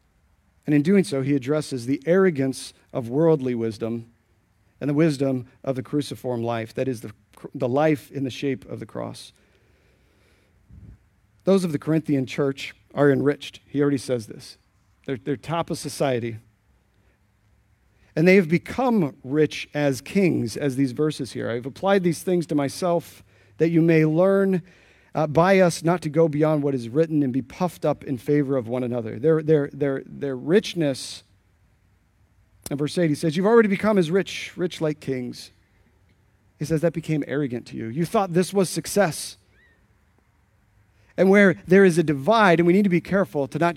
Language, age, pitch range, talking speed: English, 50-69, 115-160 Hz, 175 wpm